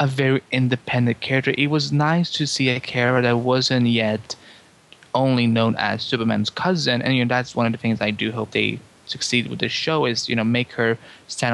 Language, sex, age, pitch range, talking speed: English, male, 20-39, 115-155 Hz, 215 wpm